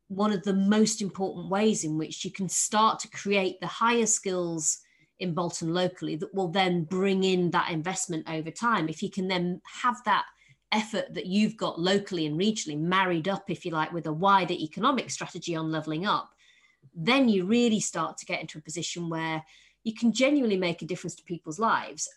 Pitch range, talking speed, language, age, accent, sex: 165-200 Hz, 200 wpm, English, 30-49, British, female